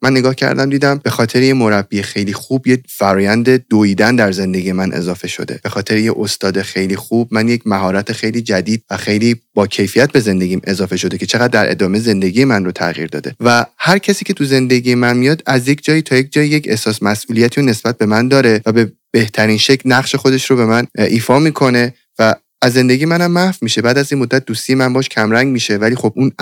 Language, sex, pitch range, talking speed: Persian, male, 105-130 Hz, 220 wpm